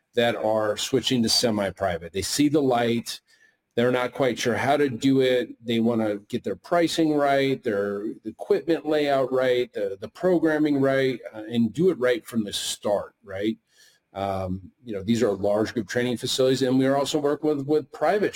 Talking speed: 185 wpm